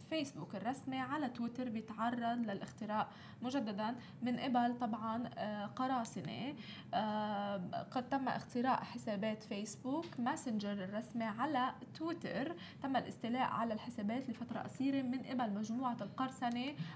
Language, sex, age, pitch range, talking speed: Arabic, female, 20-39, 215-255 Hz, 105 wpm